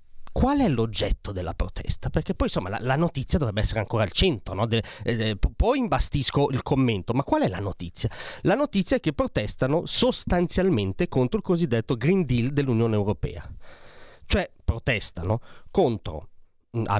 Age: 30-49